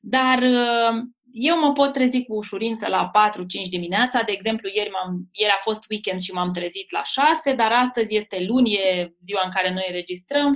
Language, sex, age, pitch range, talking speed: Romanian, female, 20-39, 195-260 Hz, 180 wpm